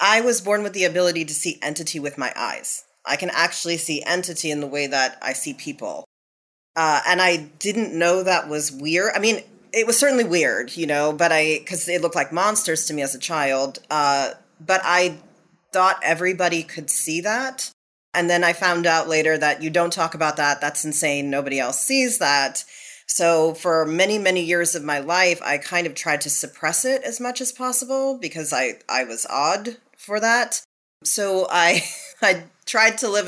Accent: American